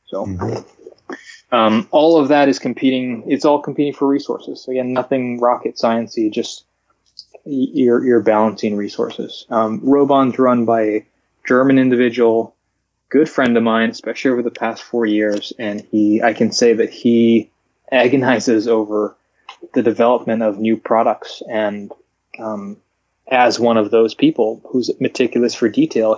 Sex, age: male, 20-39